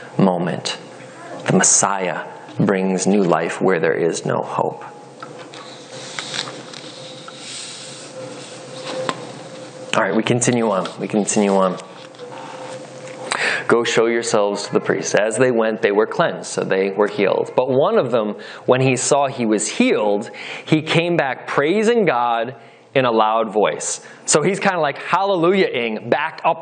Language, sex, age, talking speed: English, male, 20-39, 140 wpm